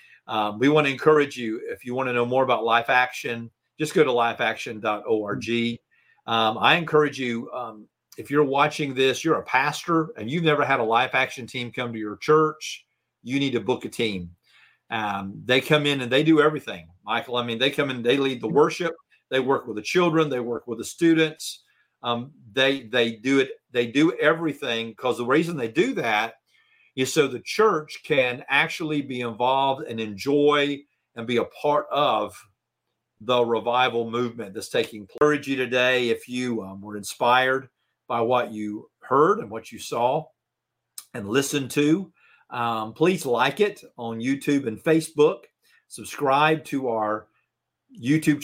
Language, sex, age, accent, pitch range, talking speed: English, male, 40-59, American, 115-150 Hz, 175 wpm